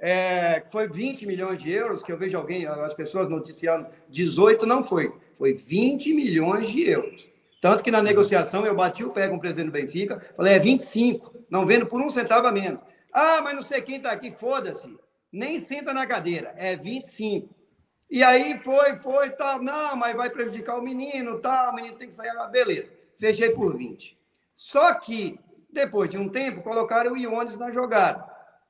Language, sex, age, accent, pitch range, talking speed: Portuguese, male, 50-69, Brazilian, 195-280 Hz, 190 wpm